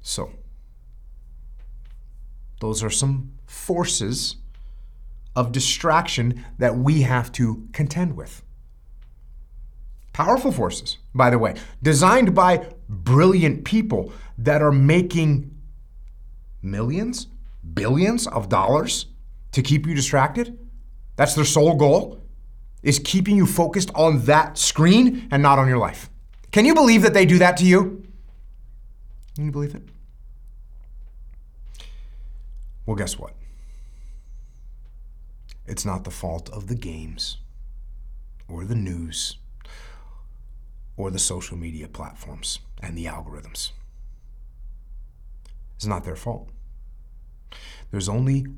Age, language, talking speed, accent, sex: 30-49, English, 110 wpm, American, male